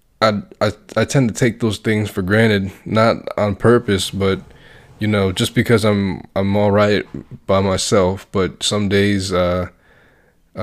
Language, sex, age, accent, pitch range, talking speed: English, male, 20-39, American, 100-115 Hz, 160 wpm